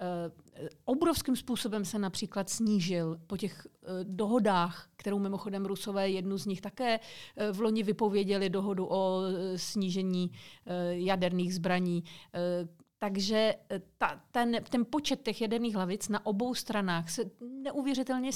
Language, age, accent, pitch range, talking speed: Czech, 40-59, native, 180-230 Hz, 120 wpm